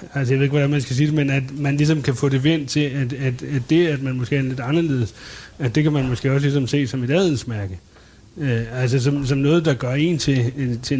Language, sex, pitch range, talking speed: Danish, male, 125-145 Hz, 265 wpm